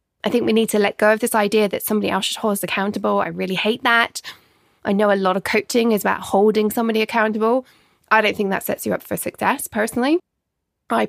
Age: 20-39